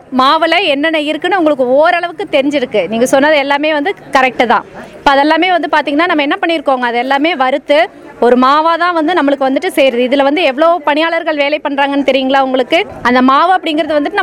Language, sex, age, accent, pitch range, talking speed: Tamil, female, 20-39, native, 275-335 Hz, 40 wpm